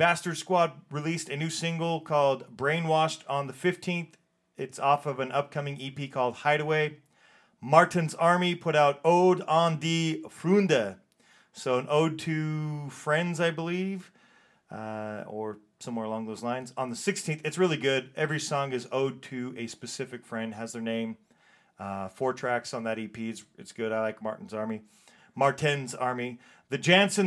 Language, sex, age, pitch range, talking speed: English, male, 30-49, 130-165 Hz, 165 wpm